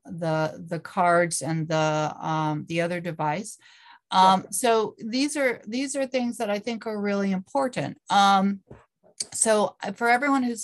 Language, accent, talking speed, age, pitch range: English, American, 150 wpm, 40-59, 170-200 Hz